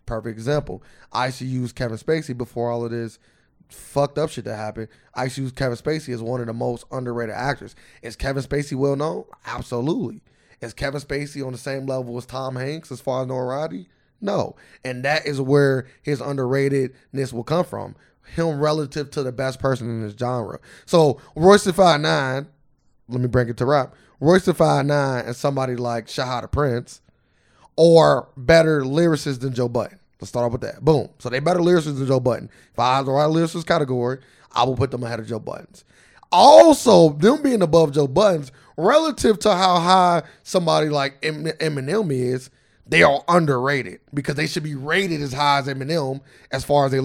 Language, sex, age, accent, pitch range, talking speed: English, male, 20-39, American, 125-160 Hz, 190 wpm